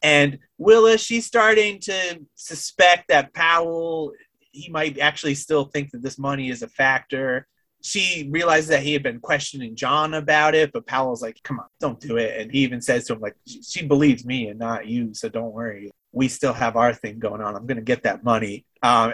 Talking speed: 205 wpm